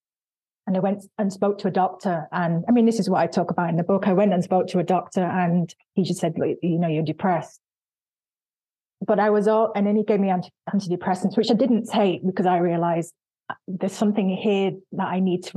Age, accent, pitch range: 30-49, British, 175-195 Hz